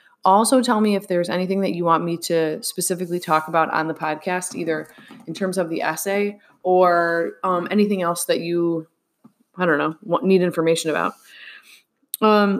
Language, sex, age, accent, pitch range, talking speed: English, female, 20-39, American, 165-205 Hz, 170 wpm